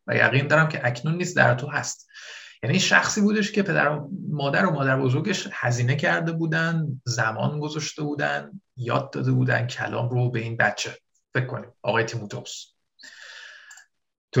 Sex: male